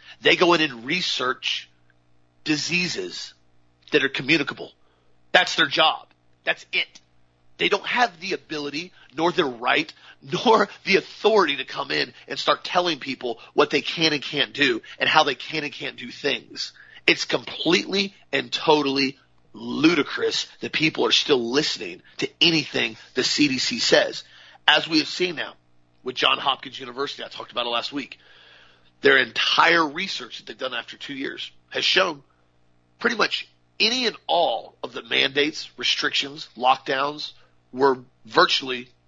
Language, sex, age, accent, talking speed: English, male, 40-59, American, 150 wpm